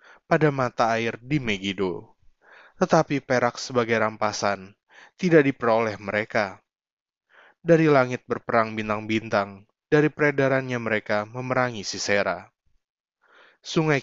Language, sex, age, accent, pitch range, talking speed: Indonesian, male, 20-39, native, 105-140 Hz, 95 wpm